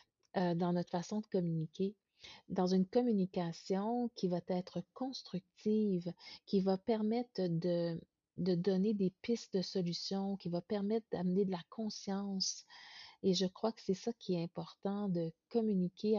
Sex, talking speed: female, 150 wpm